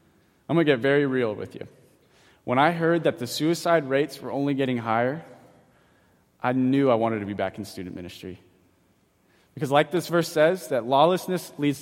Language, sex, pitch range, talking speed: English, male, 115-155 Hz, 190 wpm